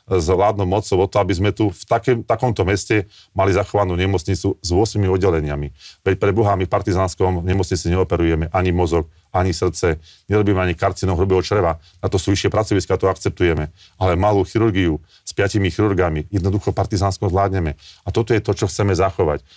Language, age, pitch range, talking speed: Slovak, 40-59, 95-105 Hz, 170 wpm